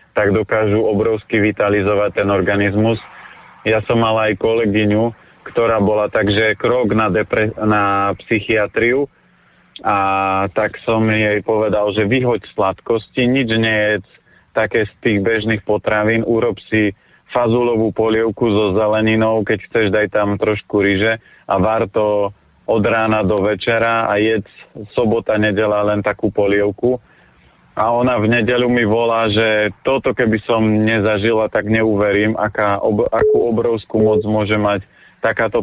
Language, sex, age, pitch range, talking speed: Slovak, male, 30-49, 105-115 Hz, 135 wpm